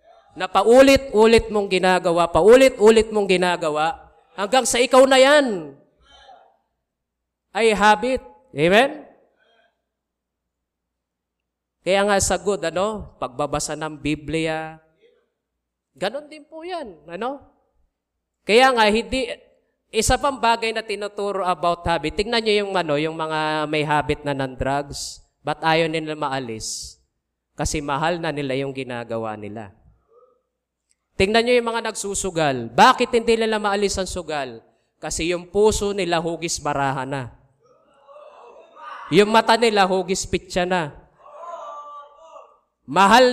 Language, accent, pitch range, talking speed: English, Filipino, 150-230 Hz, 115 wpm